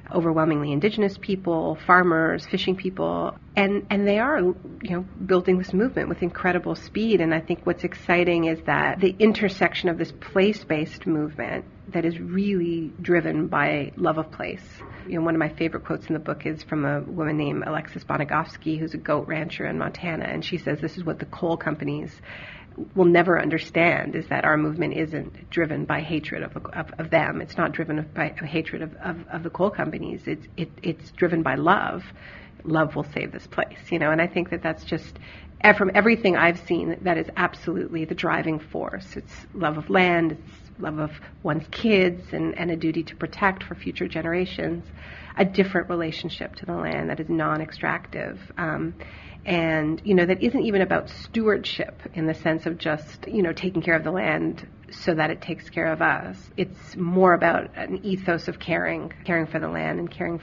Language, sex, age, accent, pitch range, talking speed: English, female, 40-59, American, 155-185 Hz, 195 wpm